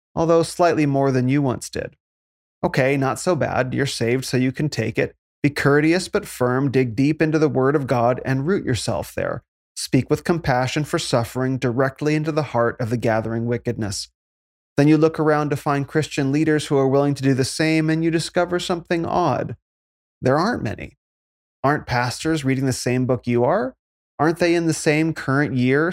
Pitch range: 120-150 Hz